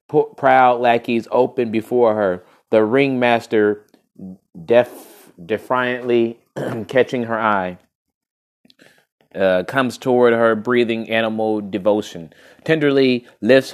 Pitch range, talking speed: 105-125 Hz, 95 wpm